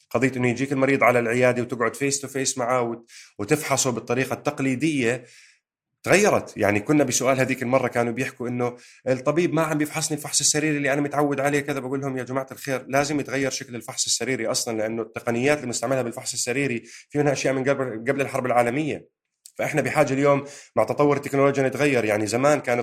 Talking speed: 180 wpm